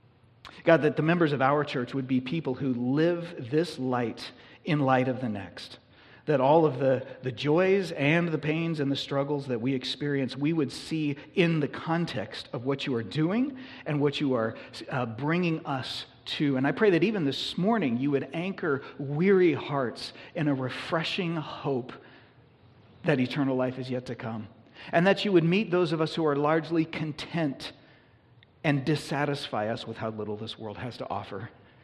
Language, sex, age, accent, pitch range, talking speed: English, male, 40-59, American, 125-155 Hz, 185 wpm